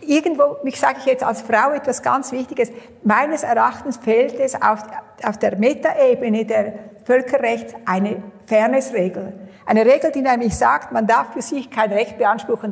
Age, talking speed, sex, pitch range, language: 60-79, 160 wpm, female, 215-265 Hz, German